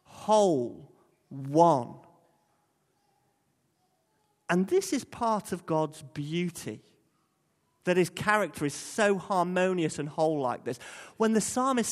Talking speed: 110 wpm